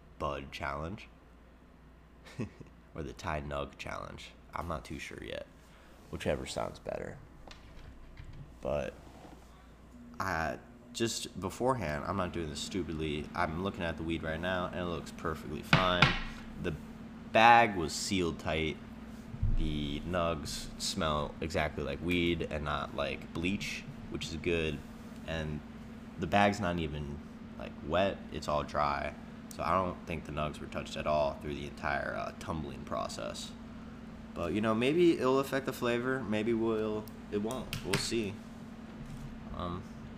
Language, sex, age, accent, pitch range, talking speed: English, male, 20-39, American, 75-105 Hz, 140 wpm